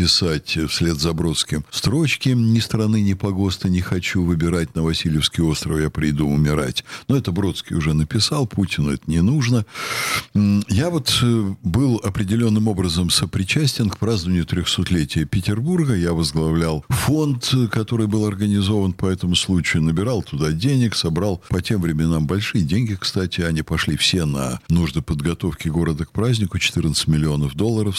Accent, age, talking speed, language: native, 60-79, 145 wpm, Russian